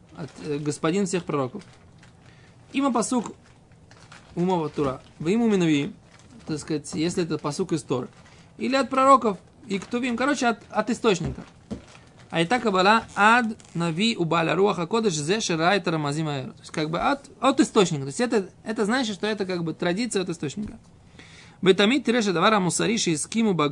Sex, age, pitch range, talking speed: male, 20-39, 165-225 Hz, 110 wpm